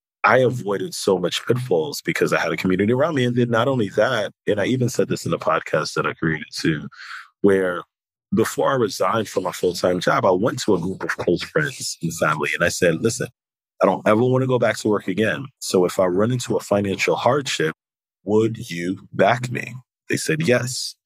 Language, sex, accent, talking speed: English, male, American, 215 wpm